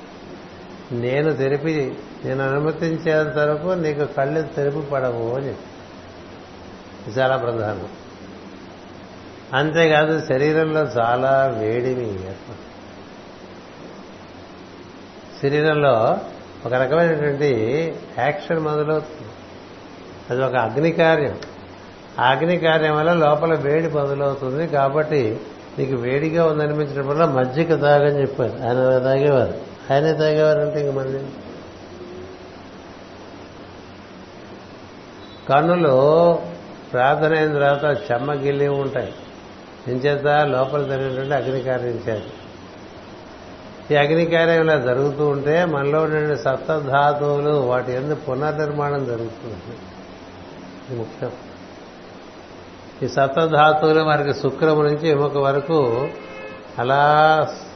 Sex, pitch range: male, 115-150 Hz